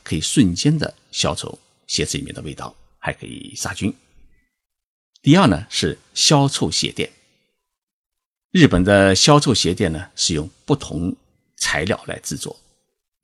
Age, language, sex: 50-69, Chinese, male